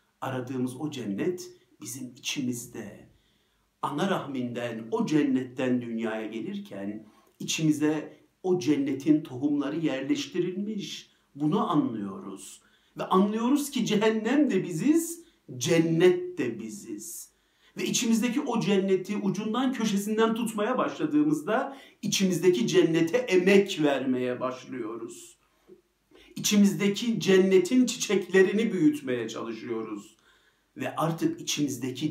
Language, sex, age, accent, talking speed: Turkish, male, 50-69, native, 90 wpm